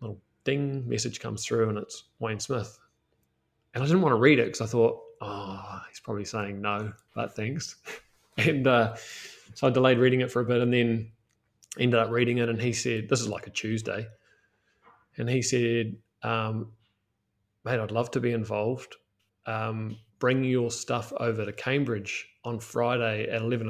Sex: male